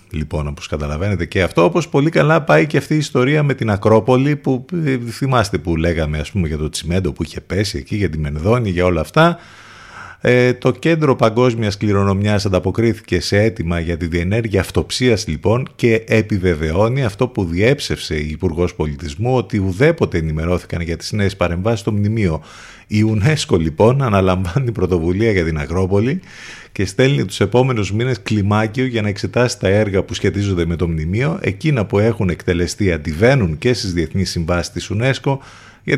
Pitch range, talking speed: 90-115 Hz, 165 wpm